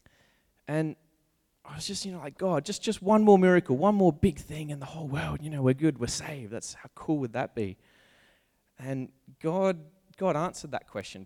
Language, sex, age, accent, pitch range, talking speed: English, male, 20-39, Australian, 105-135 Hz, 210 wpm